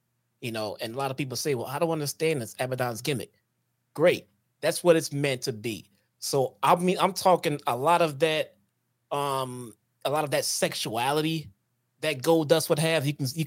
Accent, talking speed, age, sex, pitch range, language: American, 195 wpm, 30-49, male, 125-160 Hz, English